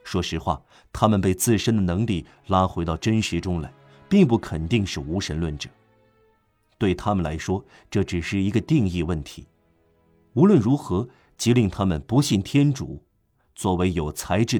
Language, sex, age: Chinese, male, 50-69